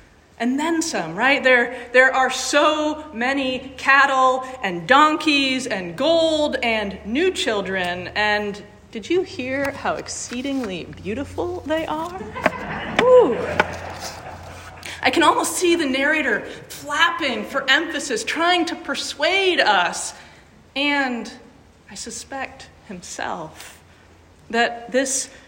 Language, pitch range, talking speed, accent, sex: English, 220-290 Hz, 110 wpm, American, female